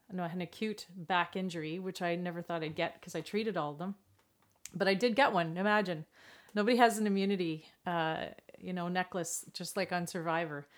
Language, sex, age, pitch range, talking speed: English, female, 30-49, 175-210 Hz, 205 wpm